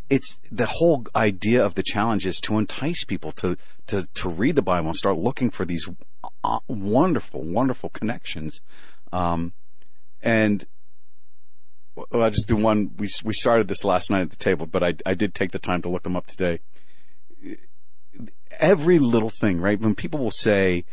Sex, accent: male, American